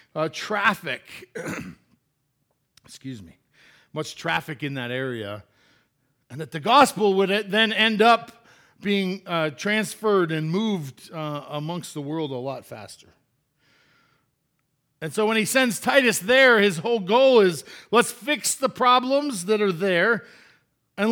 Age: 50-69